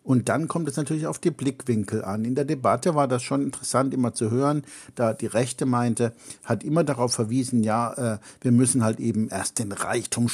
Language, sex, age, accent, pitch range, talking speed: German, male, 60-79, German, 110-130 Hz, 210 wpm